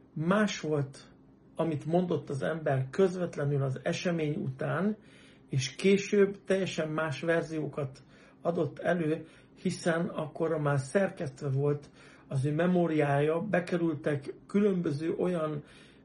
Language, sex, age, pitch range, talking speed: Hungarian, male, 60-79, 140-175 Hz, 105 wpm